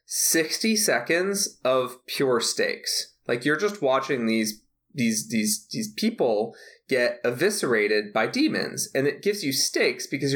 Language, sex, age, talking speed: English, male, 20-39, 140 wpm